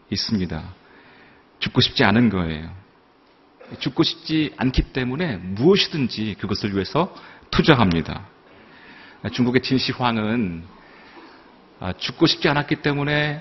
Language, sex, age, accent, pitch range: Korean, male, 40-59, native, 95-145 Hz